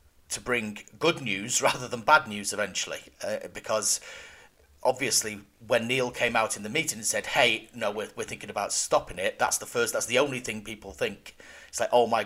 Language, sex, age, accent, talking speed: English, male, 40-59, British, 205 wpm